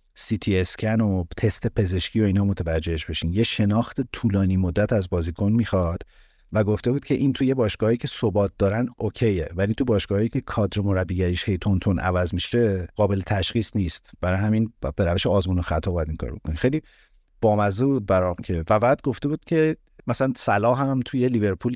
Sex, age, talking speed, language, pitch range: male, 50-69, 190 wpm, Persian, 95-120 Hz